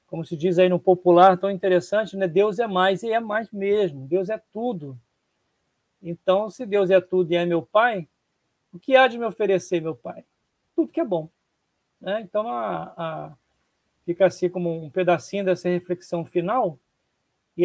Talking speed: 175 wpm